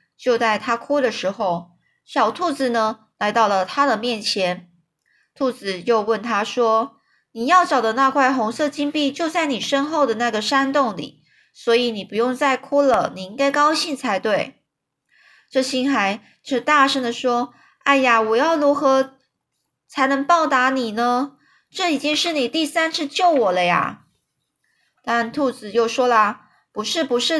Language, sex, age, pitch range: Chinese, female, 20-39, 215-280 Hz